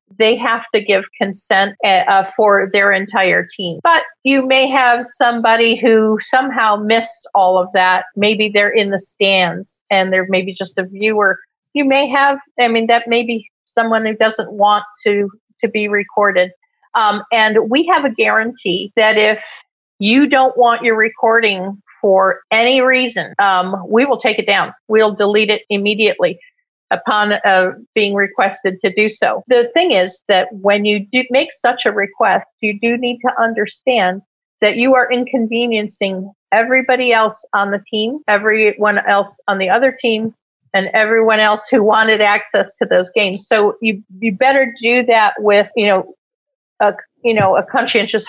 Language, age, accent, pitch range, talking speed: English, 50-69, American, 200-240 Hz, 170 wpm